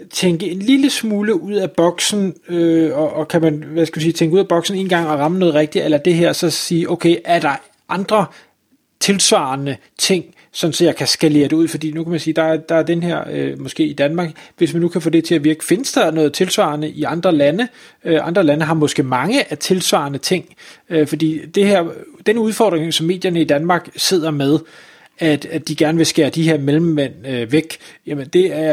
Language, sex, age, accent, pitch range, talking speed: Danish, male, 30-49, native, 155-185 Hz, 230 wpm